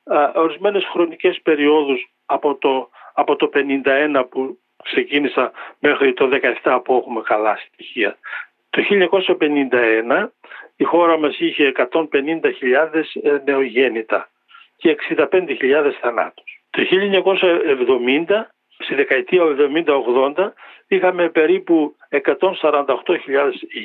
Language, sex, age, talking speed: Greek, male, 50-69, 90 wpm